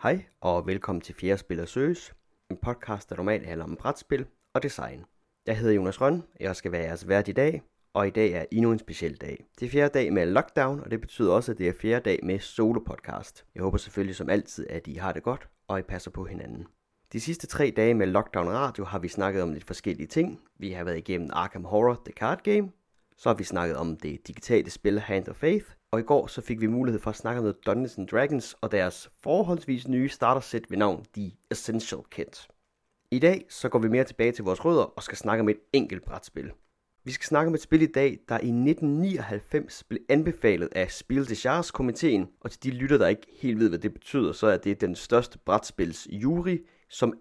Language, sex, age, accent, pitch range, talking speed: Danish, male, 30-49, native, 95-130 Hz, 225 wpm